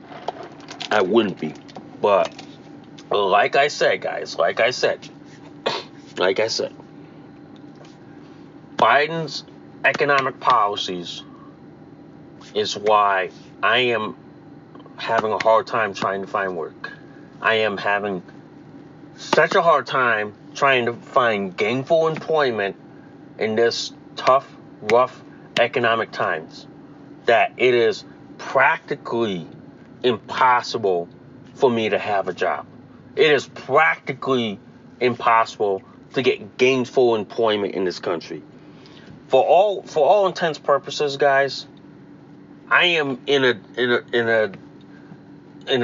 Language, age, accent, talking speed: English, 30-49, American, 110 wpm